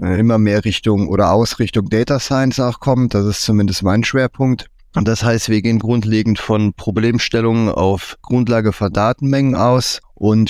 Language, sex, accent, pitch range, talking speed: German, male, German, 105-120 Hz, 160 wpm